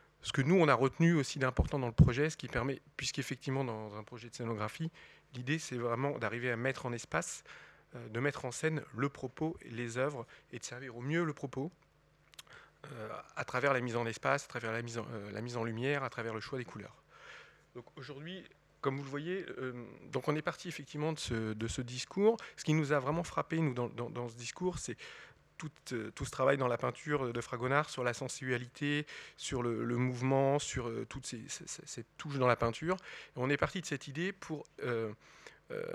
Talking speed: 220 wpm